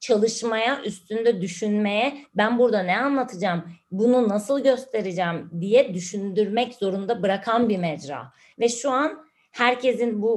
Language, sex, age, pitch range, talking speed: Turkish, female, 30-49, 185-230 Hz, 120 wpm